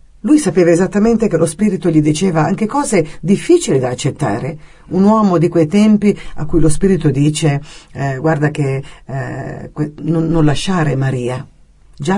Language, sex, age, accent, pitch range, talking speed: Italian, female, 50-69, native, 150-180 Hz, 160 wpm